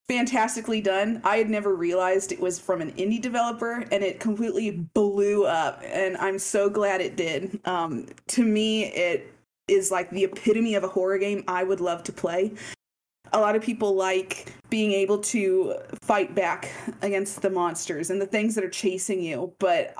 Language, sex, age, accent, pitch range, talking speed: English, female, 20-39, American, 185-215 Hz, 185 wpm